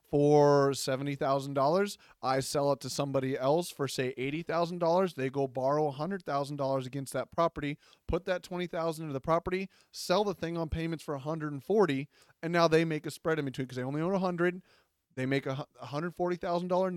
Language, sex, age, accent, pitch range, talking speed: English, male, 30-49, American, 135-170 Hz, 175 wpm